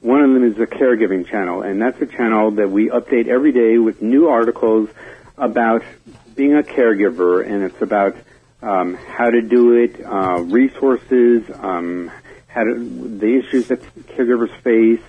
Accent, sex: American, male